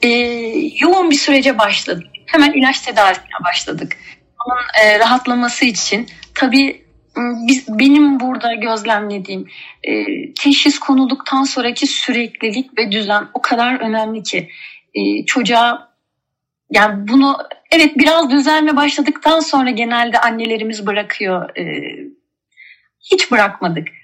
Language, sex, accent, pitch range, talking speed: Turkish, female, native, 220-275 Hz, 105 wpm